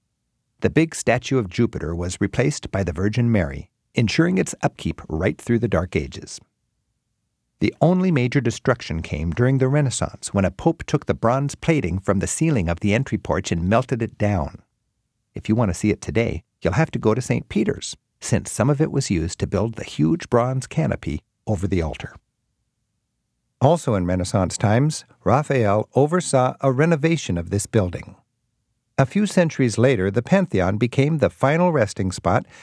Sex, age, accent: male, 50-69, American